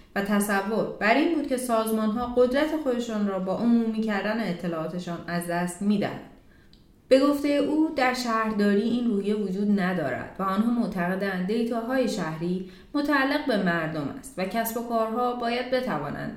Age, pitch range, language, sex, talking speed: 30-49, 175-235 Hz, Persian, female, 160 wpm